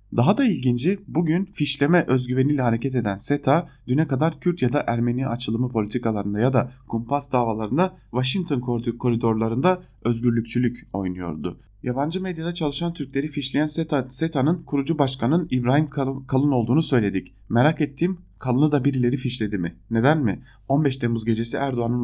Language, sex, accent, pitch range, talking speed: German, male, Turkish, 115-145 Hz, 140 wpm